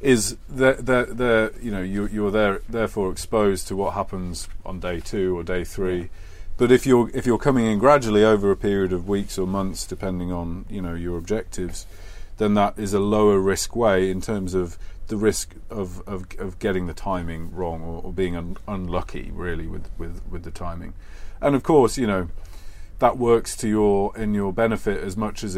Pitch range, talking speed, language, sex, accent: 90-105 Hz, 195 wpm, English, male, British